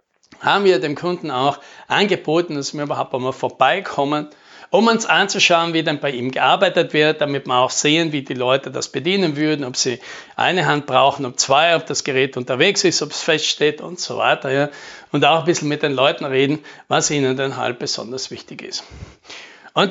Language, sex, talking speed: German, male, 195 wpm